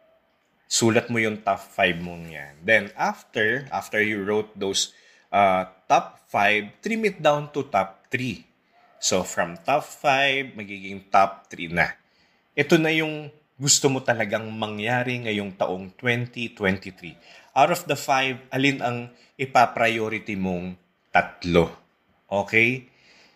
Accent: Filipino